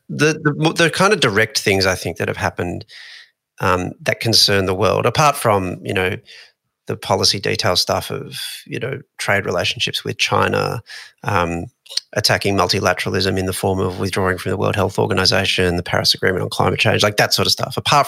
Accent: Australian